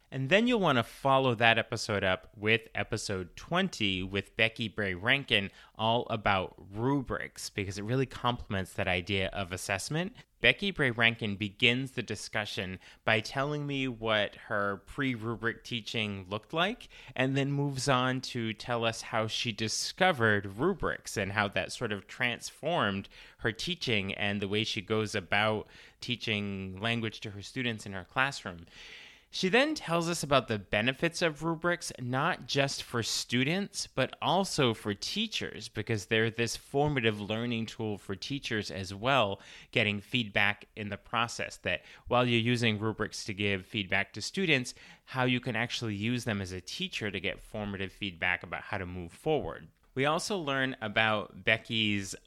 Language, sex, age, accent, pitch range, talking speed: English, male, 30-49, American, 105-130 Hz, 160 wpm